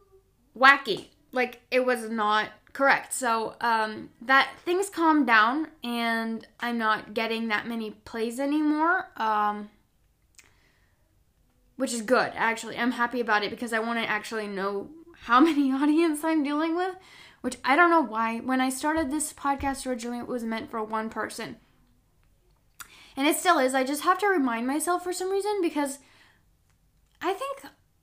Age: 10-29